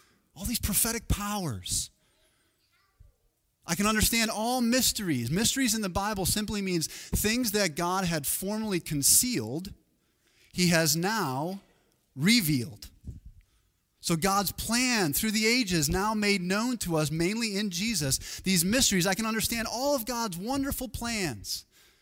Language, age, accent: English, 30-49, American